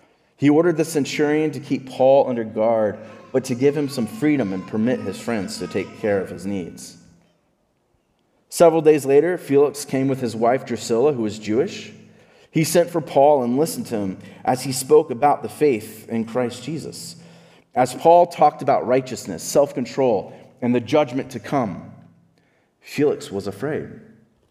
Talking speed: 165 wpm